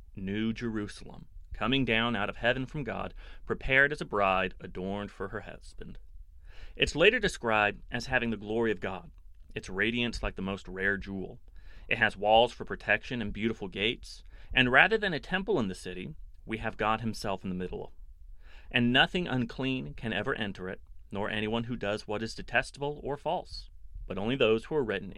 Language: English